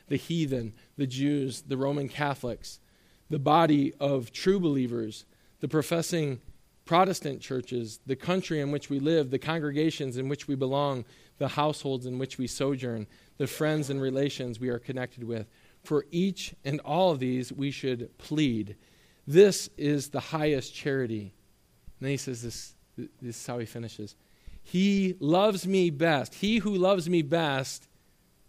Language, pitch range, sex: English, 125-155 Hz, male